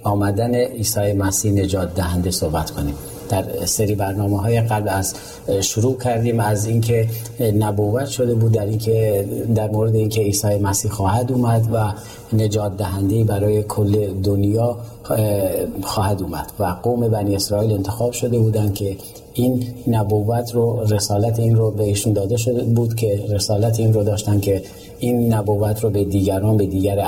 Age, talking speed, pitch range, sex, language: 40-59, 155 wpm, 100-115 Hz, male, Persian